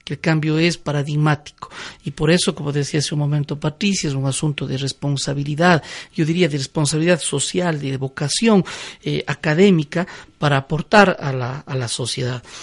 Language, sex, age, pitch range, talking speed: Spanish, male, 50-69, 150-190 Hz, 165 wpm